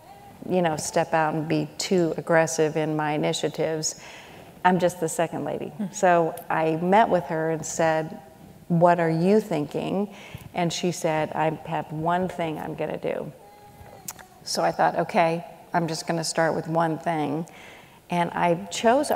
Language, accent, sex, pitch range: English, American, female, 160-195 Hz